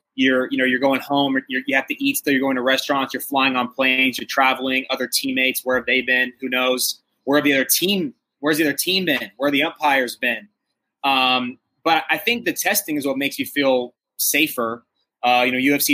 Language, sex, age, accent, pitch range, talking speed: English, male, 20-39, American, 125-155 Hz, 230 wpm